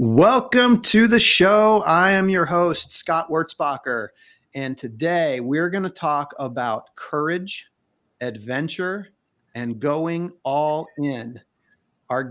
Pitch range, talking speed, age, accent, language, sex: 130-175 Hz, 115 wpm, 40-59, American, English, male